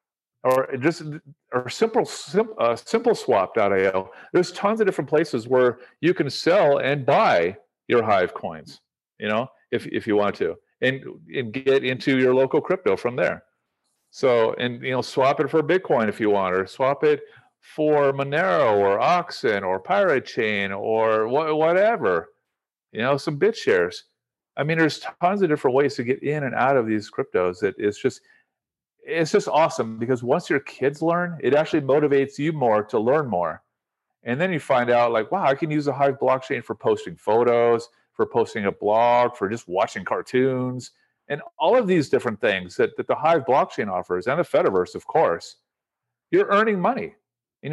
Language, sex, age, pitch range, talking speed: Filipino, male, 40-59, 120-170 Hz, 185 wpm